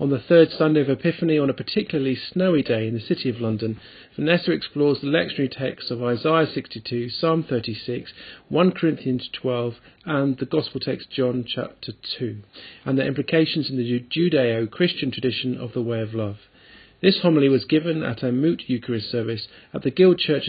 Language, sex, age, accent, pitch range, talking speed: English, male, 40-59, British, 130-195 Hz, 180 wpm